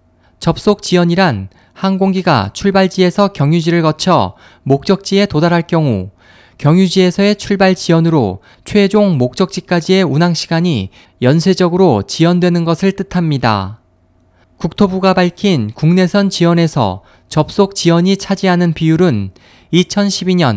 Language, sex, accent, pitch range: Korean, male, native, 120-190 Hz